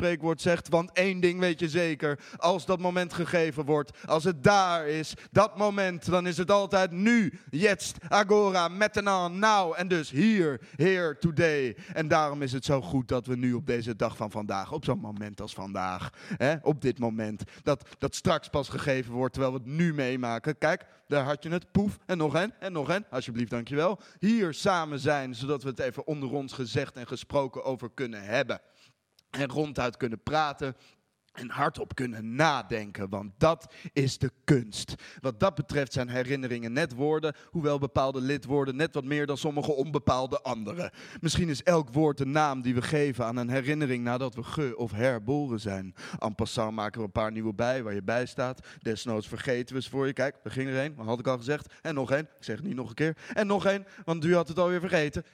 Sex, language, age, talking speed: male, Dutch, 30-49, 205 wpm